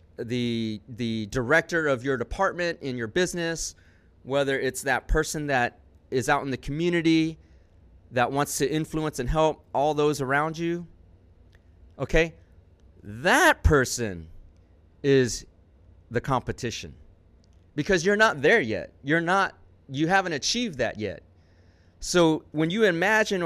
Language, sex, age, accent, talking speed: English, male, 30-49, American, 130 wpm